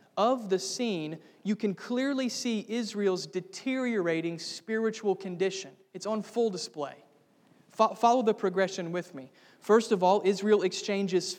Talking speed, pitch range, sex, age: 130 wpm, 180-220 Hz, male, 30-49